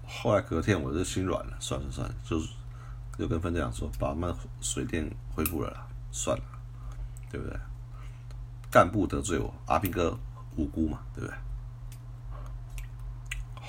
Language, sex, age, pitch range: Chinese, male, 50-69, 115-120 Hz